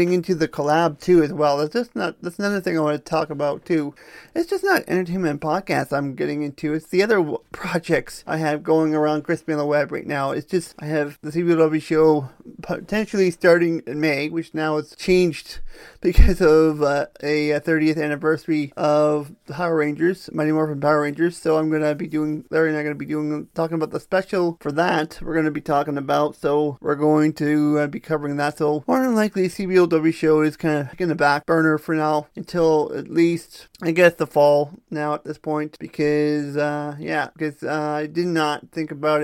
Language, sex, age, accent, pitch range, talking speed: English, male, 30-49, American, 150-170 Hz, 215 wpm